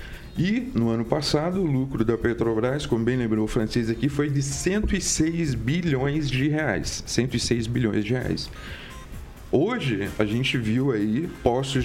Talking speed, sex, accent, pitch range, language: 150 wpm, male, Brazilian, 110-145 Hz, Portuguese